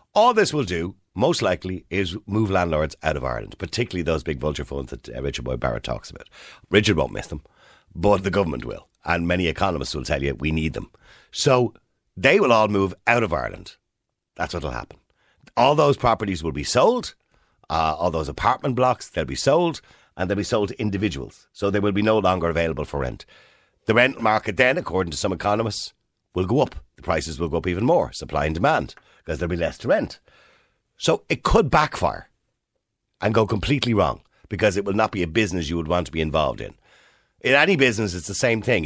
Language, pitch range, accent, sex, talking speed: English, 80-110 Hz, Irish, male, 215 wpm